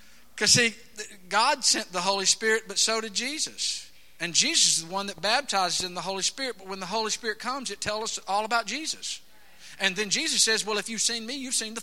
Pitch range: 165-240 Hz